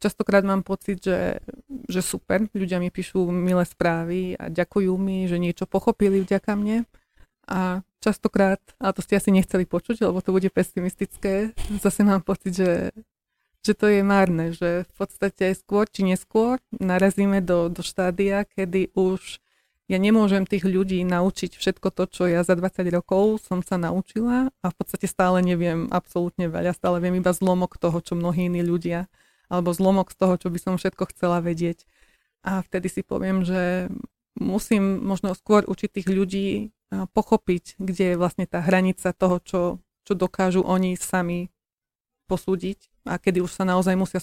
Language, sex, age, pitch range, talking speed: Slovak, female, 30-49, 180-195 Hz, 165 wpm